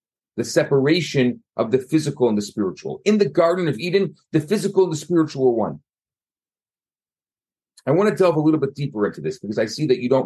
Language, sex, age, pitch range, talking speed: English, male, 40-59, 135-185 Hz, 210 wpm